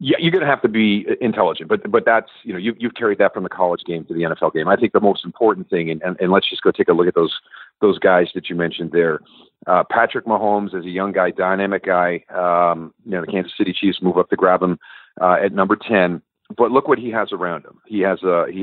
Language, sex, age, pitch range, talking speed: English, male, 40-59, 90-100 Hz, 270 wpm